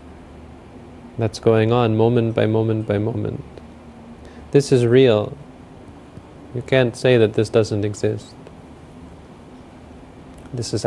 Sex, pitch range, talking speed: male, 105-125 Hz, 110 wpm